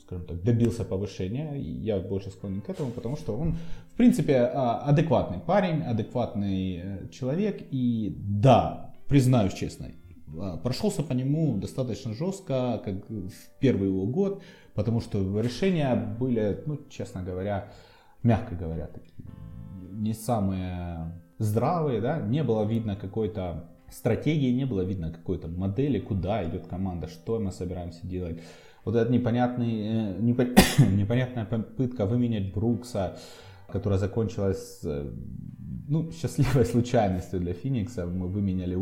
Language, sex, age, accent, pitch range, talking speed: Russian, male, 30-49, native, 95-125 Hz, 115 wpm